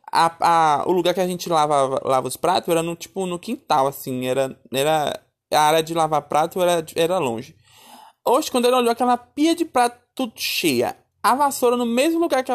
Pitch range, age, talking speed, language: 155-210 Hz, 20-39, 200 wpm, Portuguese